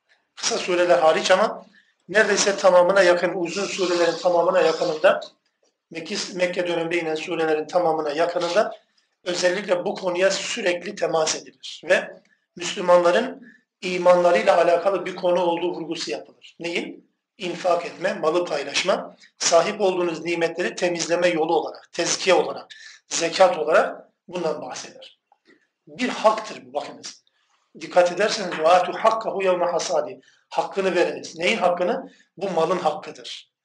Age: 50-69